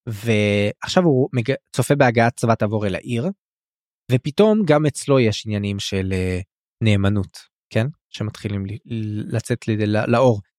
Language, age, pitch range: Hebrew, 20-39, 110-145 Hz